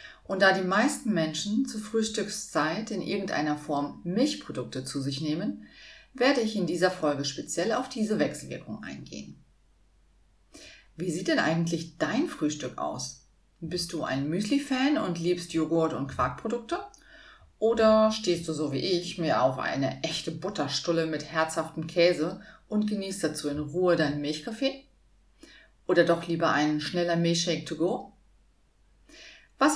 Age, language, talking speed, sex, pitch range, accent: 40-59, German, 140 wpm, female, 150-210 Hz, German